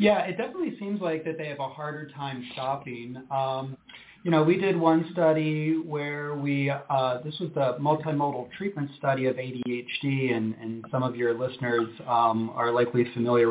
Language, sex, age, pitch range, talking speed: English, male, 30-49, 130-160 Hz, 180 wpm